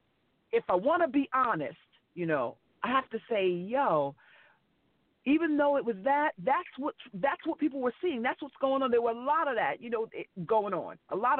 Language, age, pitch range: English, 40-59, 180-255 Hz